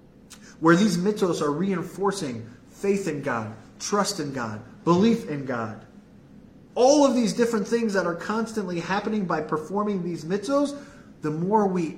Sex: male